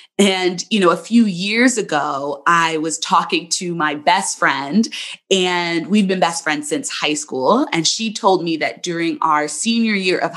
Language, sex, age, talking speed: English, female, 20-39, 185 wpm